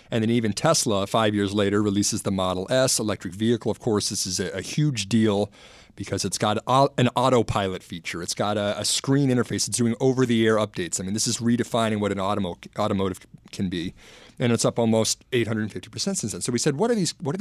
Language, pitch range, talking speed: English, 100-125 Hz, 220 wpm